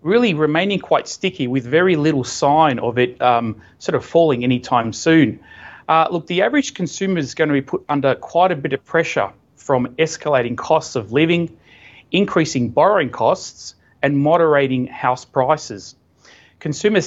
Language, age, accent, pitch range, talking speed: English, 30-49, Australian, 125-165 Hz, 155 wpm